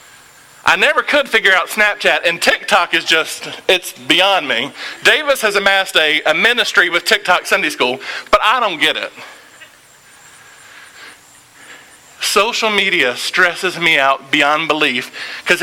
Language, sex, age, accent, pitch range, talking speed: English, male, 40-59, American, 160-225 Hz, 135 wpm